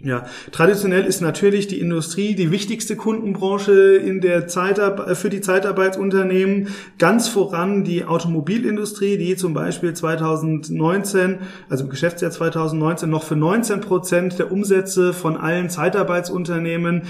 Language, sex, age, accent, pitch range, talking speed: German, male, 30-49, German, 150-185 Hz, 125 wpm